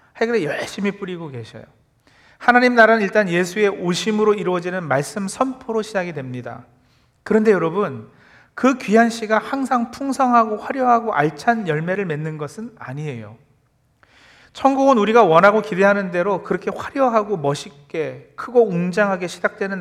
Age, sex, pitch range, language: 40-59, male, 170-230 Hz, Korean